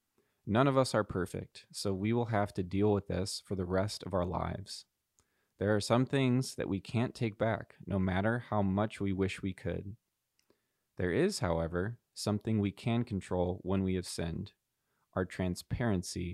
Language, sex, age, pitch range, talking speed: English, male, 20-39, 90-110 Hz, 180 wpm